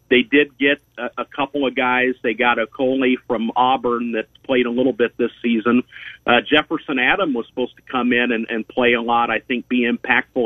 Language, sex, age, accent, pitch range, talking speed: English, male, 50-69, American, 115-130 Hz, 210 wpm